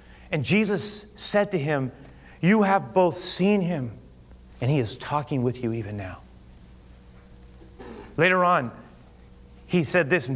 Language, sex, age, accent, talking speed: English, male, 30-49, American, 140 wpm